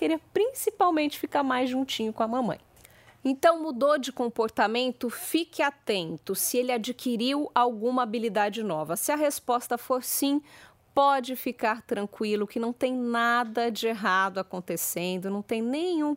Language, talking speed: Portuguese, 140 wpm